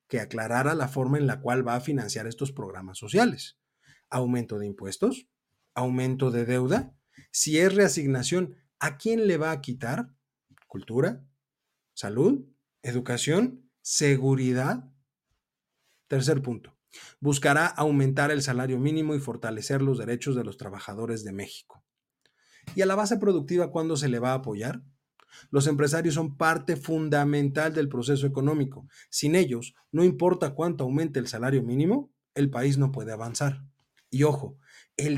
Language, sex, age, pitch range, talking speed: Spanish, male, 40-59, 125-160 Hz, 145 wpm